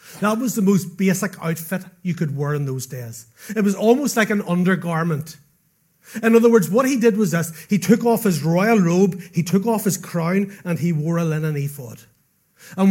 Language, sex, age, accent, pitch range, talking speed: English, male, 30-49, Irish, 160-205 Hz, 205 wpm